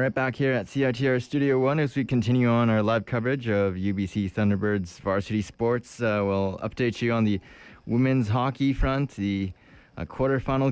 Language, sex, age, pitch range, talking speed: English, male, 20-39, 95-125 Hz, 175 wpm